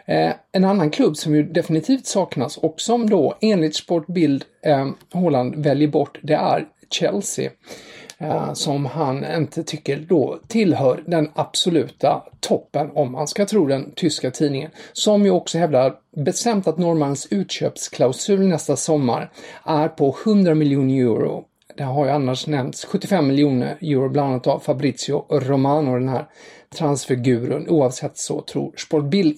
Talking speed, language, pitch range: 145 wpm, English, 145-180 Hz